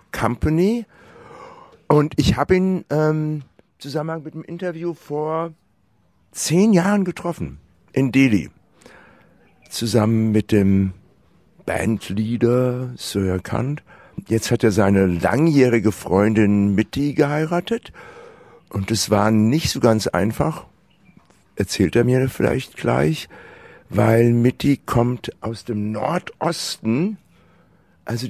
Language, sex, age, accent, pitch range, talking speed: German, male, 60-79, German, 95-140 Hz, 110 wpm